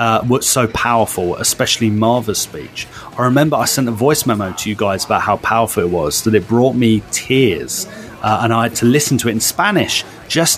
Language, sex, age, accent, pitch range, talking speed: English, male, 30-49, British, 110-140 Hz, 215 wpm